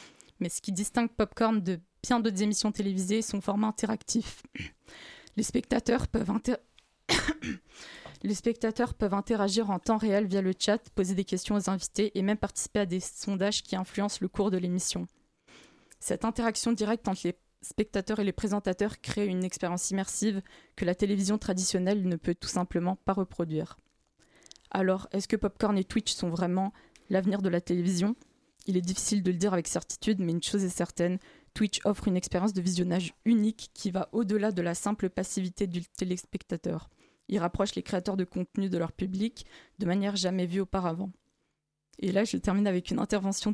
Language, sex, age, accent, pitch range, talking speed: French, female, 20-39, French, 185-210 Hz, 175 wpm